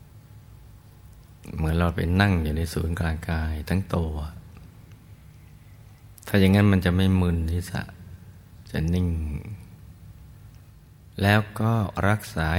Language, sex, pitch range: Thai, male, 85-105 Hz